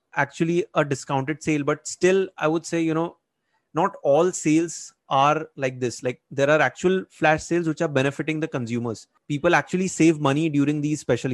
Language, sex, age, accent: English, male, 30-49, Indian